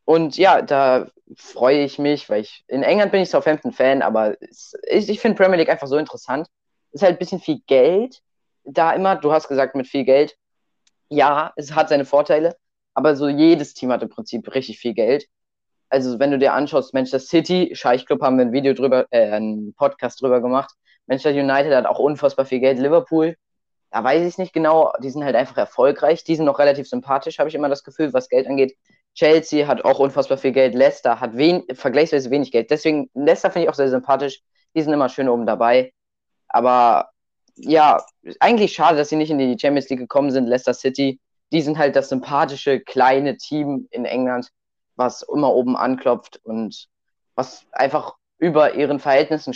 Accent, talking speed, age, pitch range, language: German, 195 wpm, 20-39, 125-150 Hz, German